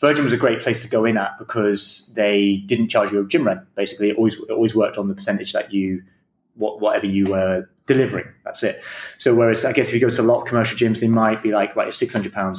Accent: British